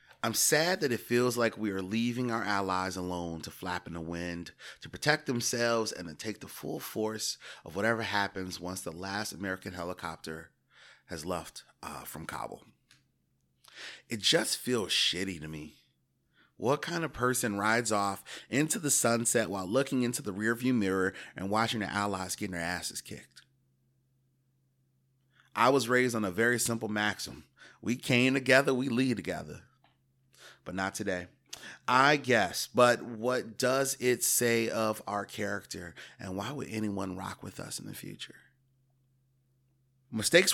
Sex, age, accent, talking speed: male, 30-49, American, 155 wpm